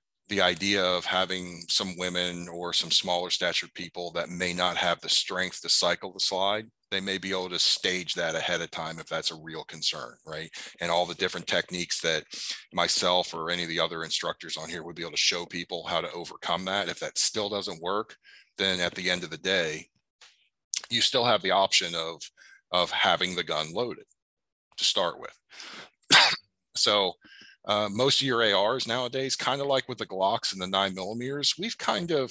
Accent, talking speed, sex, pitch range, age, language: American, 200 wpm, male, 90-110 Hz, 40-59, English